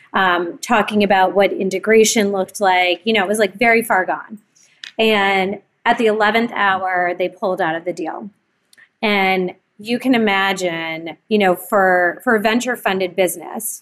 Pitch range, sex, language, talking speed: 180-215 Hz, female, English, 160 wpm